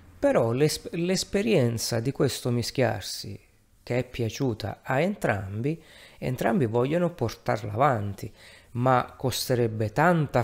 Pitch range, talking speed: 110-125 Hz, 105 wpm